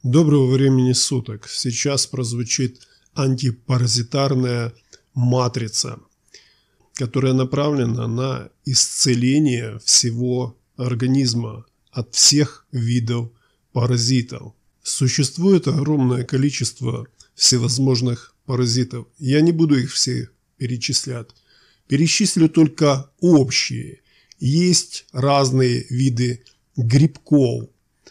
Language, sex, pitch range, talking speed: Bulgarian, male, 125-140 Hz, 75 wpm